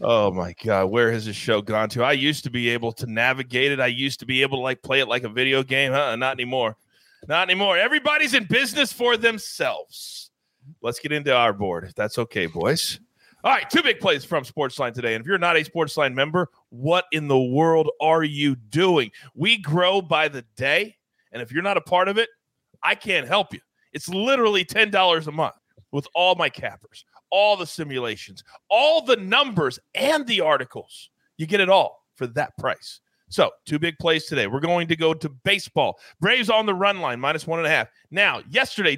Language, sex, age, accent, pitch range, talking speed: English, male, 30-49, American, 140-205 Hz, 210 wpm